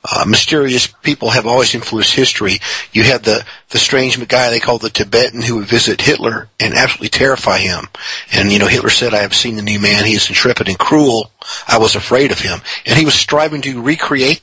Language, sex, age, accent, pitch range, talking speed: English, male, 40-59, American, 115-150 Hz, 215 wpm